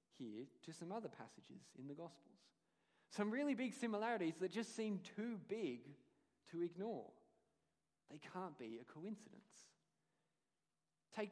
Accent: Australian